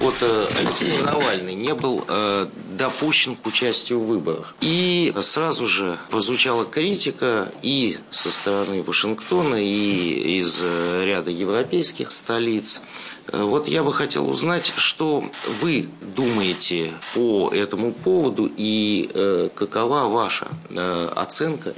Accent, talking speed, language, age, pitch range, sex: native, 105 wpm, Russian, 50-69, 105-130 Hz, male